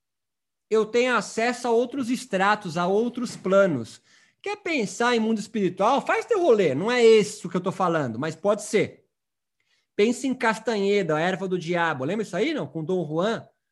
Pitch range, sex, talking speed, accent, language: 175-245 Hz, male, 180 wpm, Brazilian, Portuguese